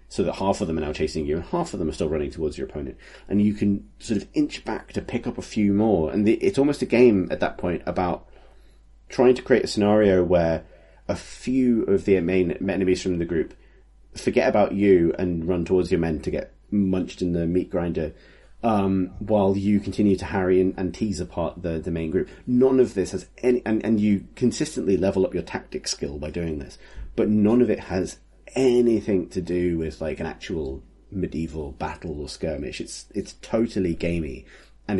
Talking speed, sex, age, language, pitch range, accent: 210 wpm, male, 30-49, English, 85-105 Hz, British